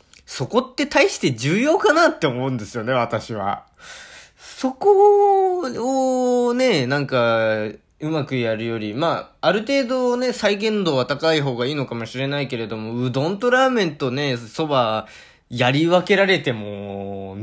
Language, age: Japanese, 20-39